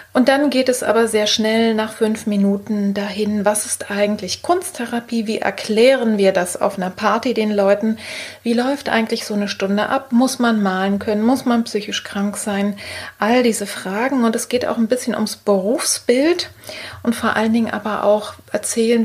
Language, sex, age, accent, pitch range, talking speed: German, female, 30-49, German, 205-235 Hz, 185 wpm